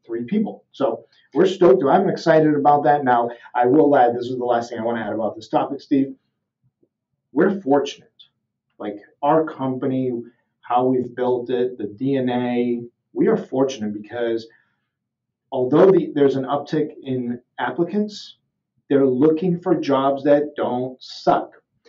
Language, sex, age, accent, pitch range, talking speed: English, male, 40-59, American, 120-170 Hz, 150 wpm